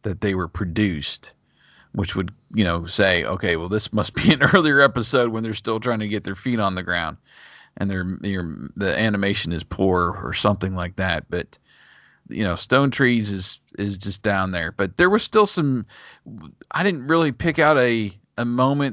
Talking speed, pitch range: 195 wpm, 95-120 Hz